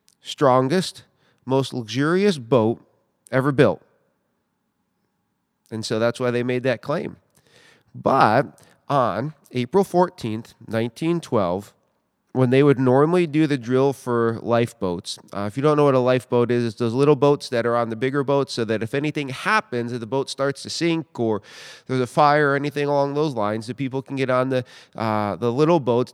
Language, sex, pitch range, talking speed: English, male, 120-145 Hz, 175 wpm